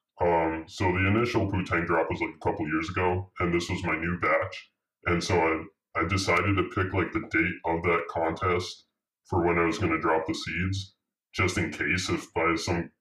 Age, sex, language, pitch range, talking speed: 10-29, female, English, 80-95 Hz, 210 wpm